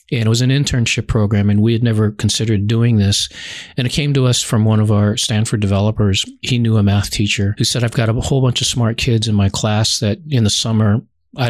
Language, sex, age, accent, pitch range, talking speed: English, male, 40-59, American, 105-120 Hz, 245 wpm